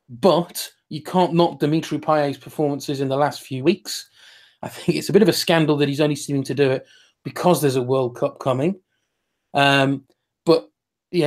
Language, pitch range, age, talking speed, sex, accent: English, 140-170 Hz, 20-39, 190 wpm, male, British